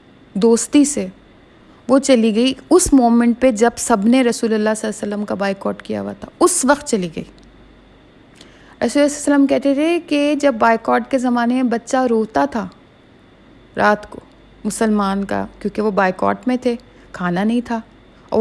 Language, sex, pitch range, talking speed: Urdu, female, 225-275 Hz, 170 wpm